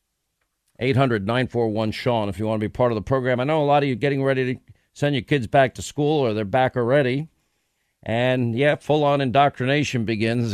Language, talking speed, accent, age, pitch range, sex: English, 200 wpm, American, 50-69, 115-145 Hz, male